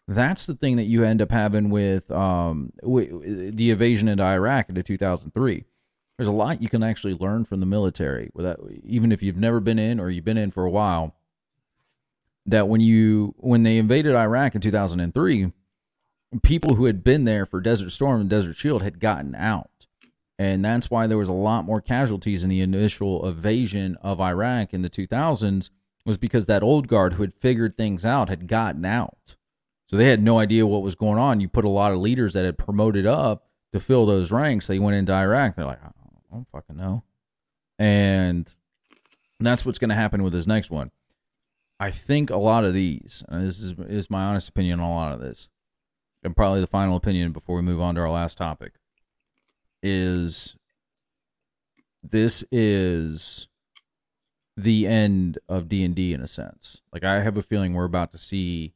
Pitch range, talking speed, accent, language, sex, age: 90-115 Hz, 190 wpm, American, English, male, 30-49